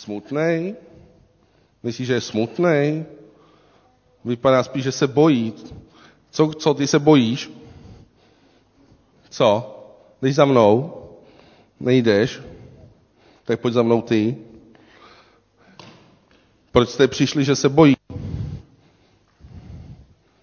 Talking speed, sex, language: 90 wpm, male, Czech